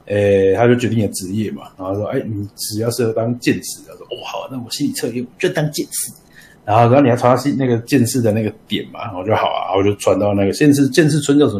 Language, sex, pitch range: Chinese, male, 105-135 Hz